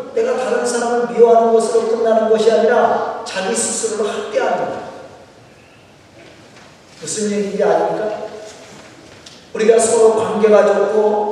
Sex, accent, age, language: male, native, 40-59, Korean